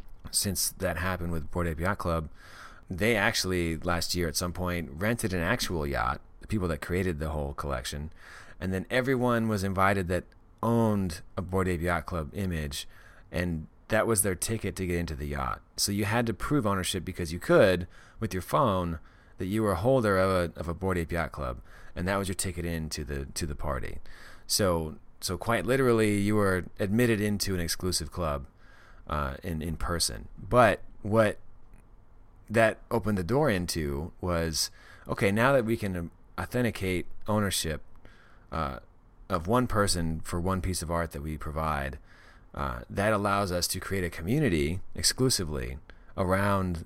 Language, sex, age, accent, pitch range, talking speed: English, male, 30-49, American, 85-105 Hz, 170 wpm